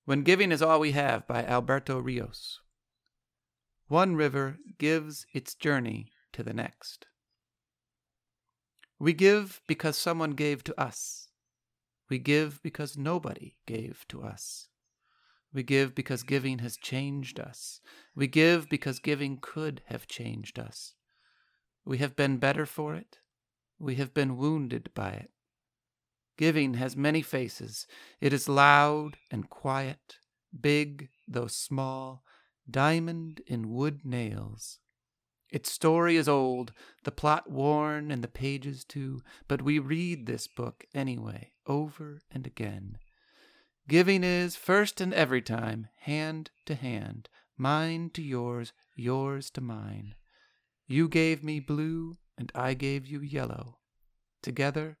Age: 50-69